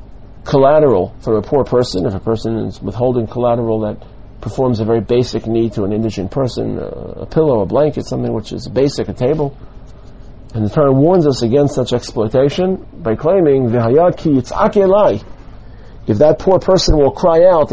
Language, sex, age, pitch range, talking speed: English, male, 40-59, 110-155 Hz, 165 wpm